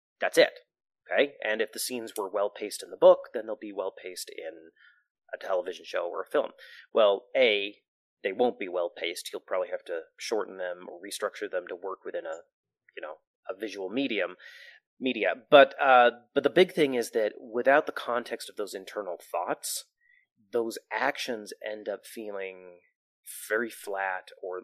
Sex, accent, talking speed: male, American, 180 wpm